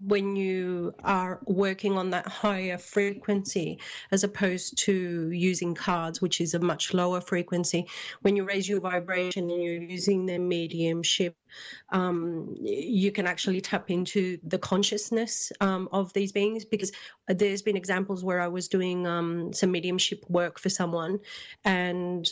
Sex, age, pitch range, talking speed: female, 30-49, 180-200 Hz, 150 wpm